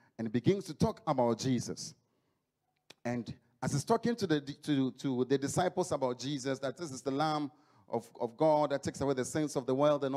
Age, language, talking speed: 40-59, English, 210 wpm